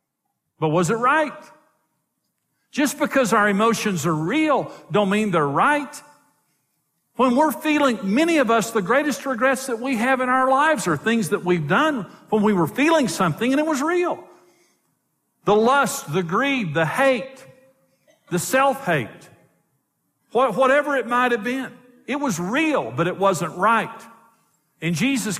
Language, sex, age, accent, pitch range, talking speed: English, male, 50-69, American, 190-265 Hz, 155 wpm